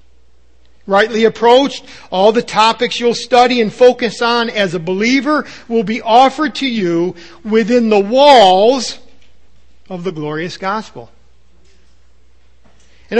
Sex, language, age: male, English, 50-69